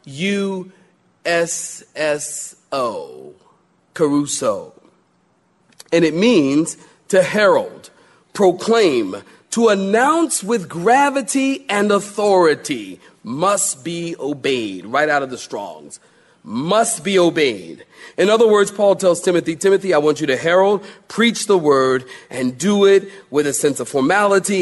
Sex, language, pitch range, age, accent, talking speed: male, English, 160-215 Hz, 40-59, American, 115 wpm